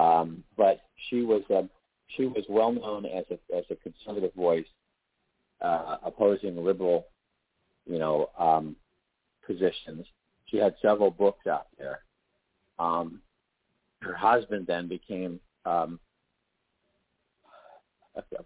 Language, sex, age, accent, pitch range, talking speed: English, male, 50-69, American, 85-120 Hz, 110 wpm